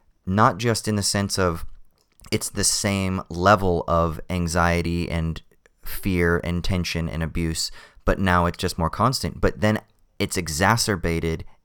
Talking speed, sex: 145 wpm, male